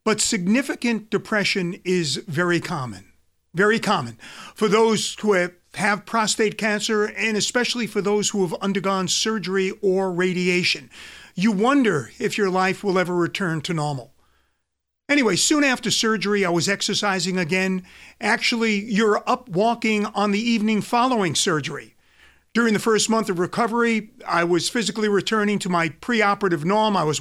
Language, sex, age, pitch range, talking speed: English, male, 50-69, 180-220 Hz, 150 wpm